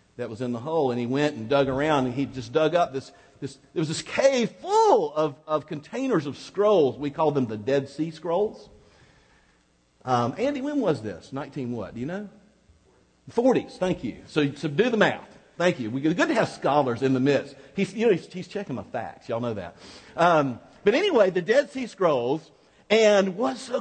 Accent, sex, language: American, male, English